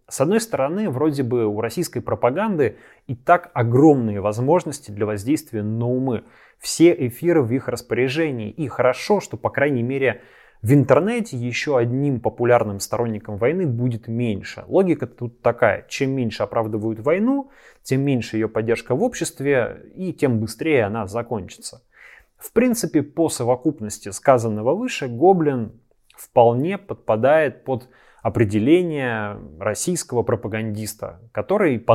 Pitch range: 115-160 Hz